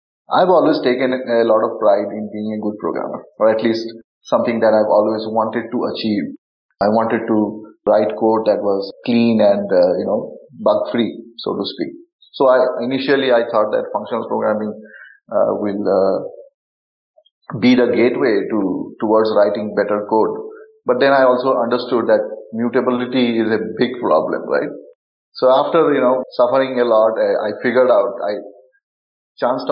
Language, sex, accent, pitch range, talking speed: English, male, Indian, 110-150 Hz, 170 wpm